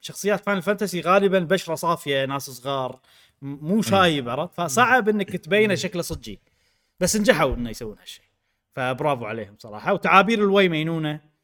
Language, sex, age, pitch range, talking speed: Arabic, male, 30-49, 135-195 Hz, 140 wpm